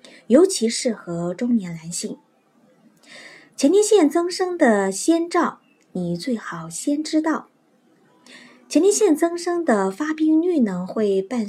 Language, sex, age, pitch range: Chinese, female, 20-39, 190-290 Hz